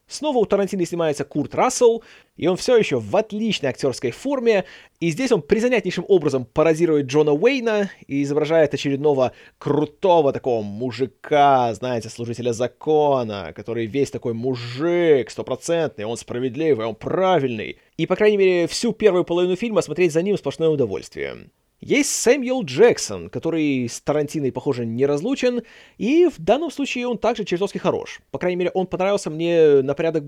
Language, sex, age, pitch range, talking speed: Russian, male, 20-39, 135-205 Hz, 155 wpm